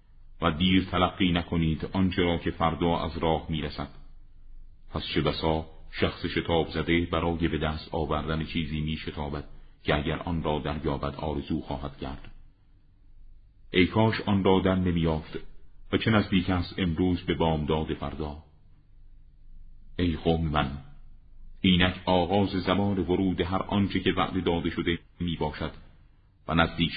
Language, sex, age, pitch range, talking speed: Persian, male, 40-59, 80-95 Hz, 140 wpm